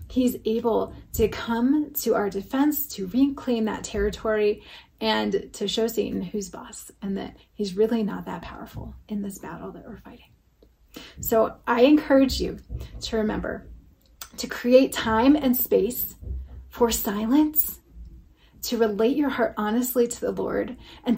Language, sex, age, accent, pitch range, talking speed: English, female, 30-49, American, 195-240 Hz, 145 wpm